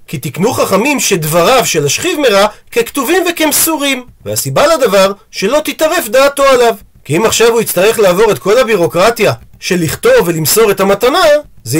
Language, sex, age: Hebrew, male, 40-59